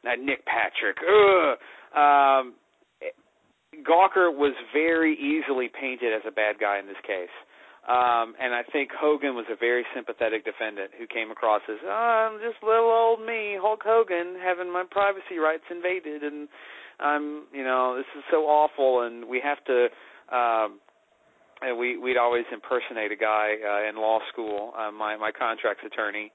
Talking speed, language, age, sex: 165 wpm, English, 40-59, male